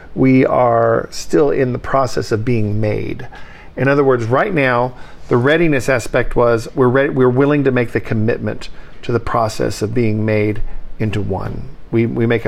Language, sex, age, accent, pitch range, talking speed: English, male, 50-69, American, 110-125 Hz, 180 wpm